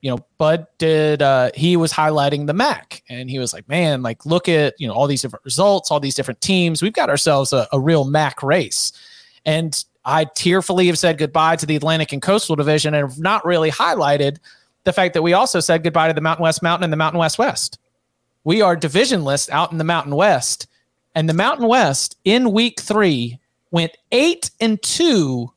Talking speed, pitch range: 210 wpm, 145-180 Hz